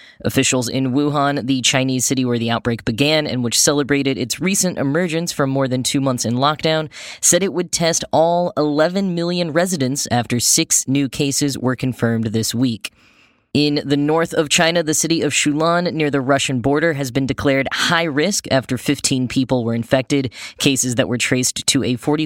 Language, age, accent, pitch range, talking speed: English, 10-29, American, 125-160 Hz, 185 wpm